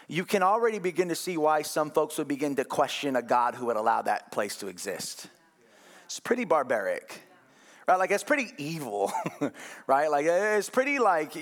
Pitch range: 145-185 Hz